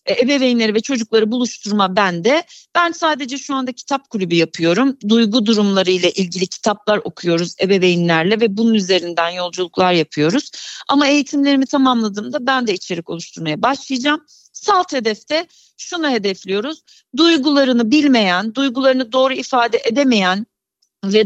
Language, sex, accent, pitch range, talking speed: Turkish, female, native, 200-280 Hz, 120 wpm